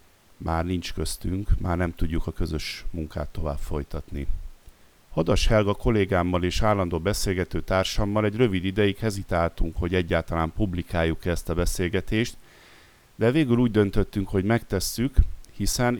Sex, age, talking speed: male, 50-69, 130 wpm